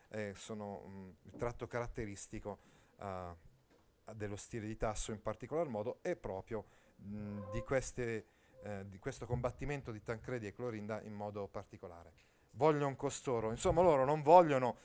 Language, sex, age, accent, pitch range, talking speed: Italian, male, 40-59, native, 110-145 Hz, 145 wpm